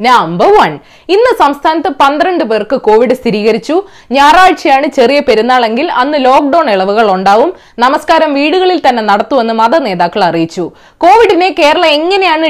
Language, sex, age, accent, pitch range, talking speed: Malayalam, female, 20-39, native, 220-330 Hz, 110 wpm